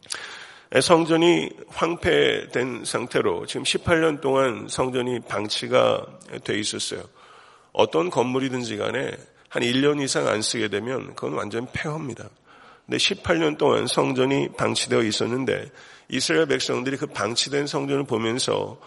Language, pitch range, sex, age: Korean, 120-145 Hz, male, 40-59